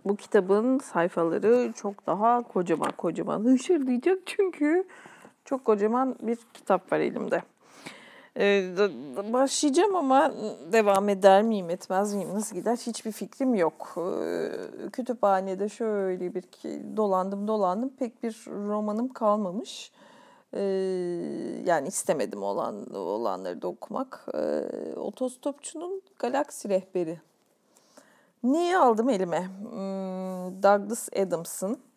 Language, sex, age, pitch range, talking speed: Turkish, female, 40-59, 195-265 Hz, 110 wpm